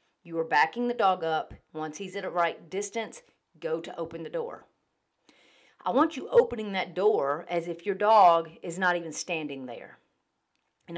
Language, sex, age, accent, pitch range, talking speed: English, female, 40-59, American, 170-230 Hz, 180 wpm